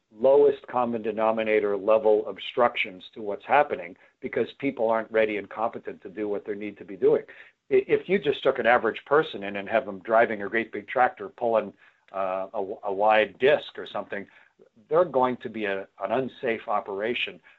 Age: 60-79